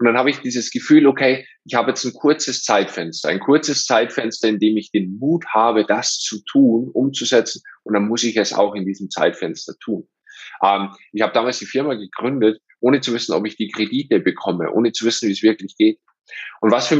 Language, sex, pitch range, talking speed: German, male, 105-135 Hz, 210 wpm